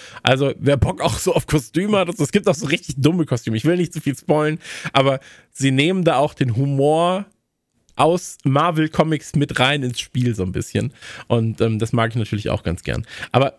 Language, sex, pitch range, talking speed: German, male, 115-150 Hz, 210 wpm